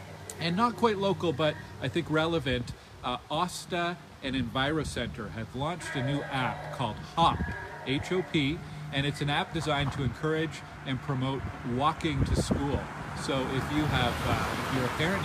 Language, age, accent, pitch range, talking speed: English, 40-59, American, 120-150 Hz, 160 wpm